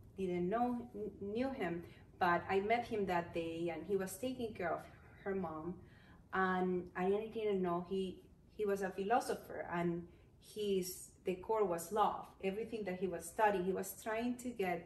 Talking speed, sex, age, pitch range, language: 175 wpm, female, 30-49, 180-220 Hz, English